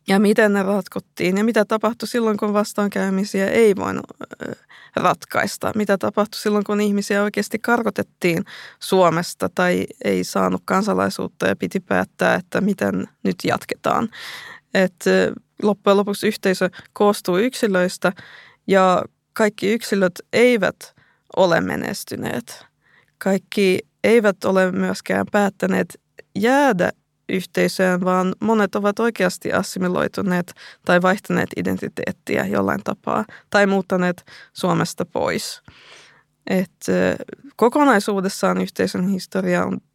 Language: Finnish